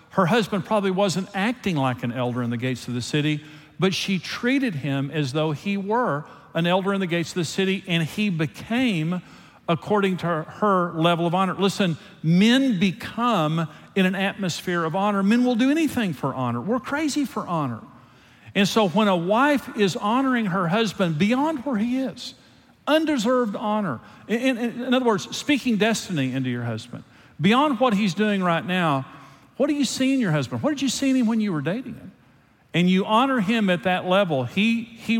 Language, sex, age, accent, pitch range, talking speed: English, male, 50-69, American, 150-215 Hz, 200 wpm